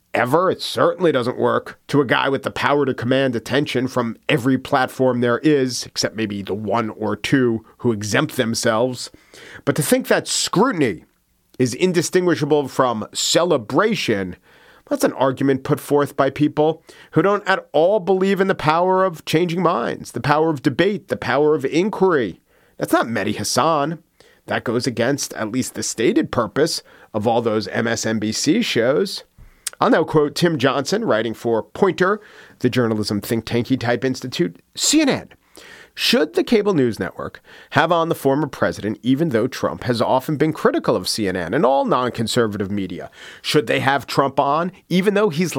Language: English